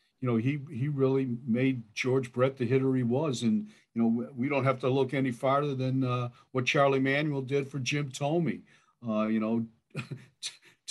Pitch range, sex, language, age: 120-145 Hz, male, English, 50-69